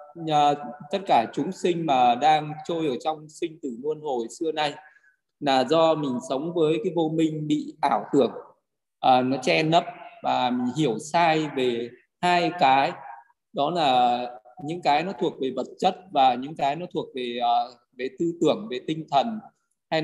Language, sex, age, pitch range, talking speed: Vietnamese, male, 20-39, 140-175 Hz, 185 wpm